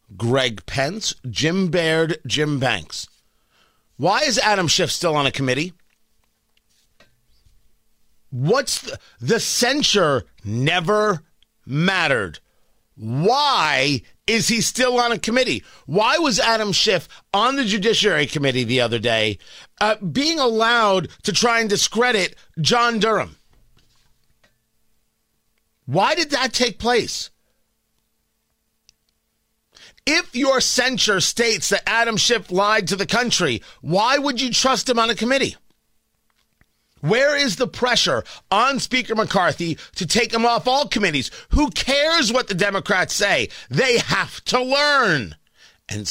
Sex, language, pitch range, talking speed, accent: male, English, 150-235 Hz, 125 wpm, American